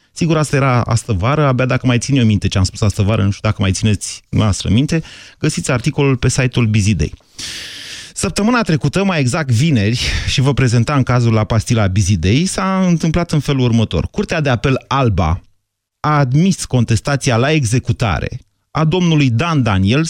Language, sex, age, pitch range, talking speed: Romanian, male, 30-49, 110-160 Hz, 165 wpm